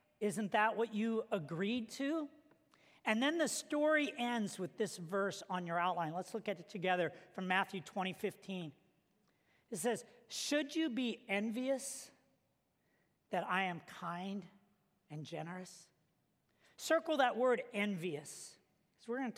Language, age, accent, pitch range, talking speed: English, 50-69, American, 195-255 Hz, 140 wpm